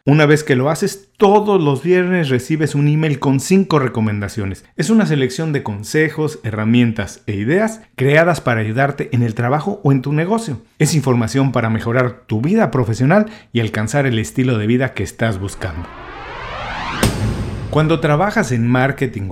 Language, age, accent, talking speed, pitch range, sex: Spanish, 40-59, Mexican, 160 wpm, 115-150 Hz, male